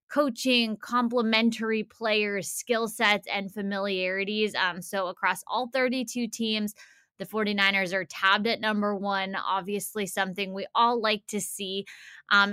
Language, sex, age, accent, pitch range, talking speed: English, female, 20-39, American, 190-215 Hz, 135 wpm